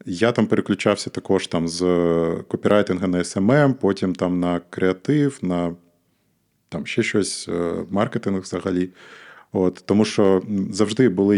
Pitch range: 95-120 Hz